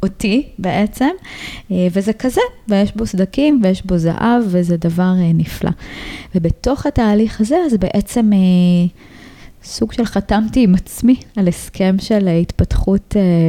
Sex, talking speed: female, 110 wpm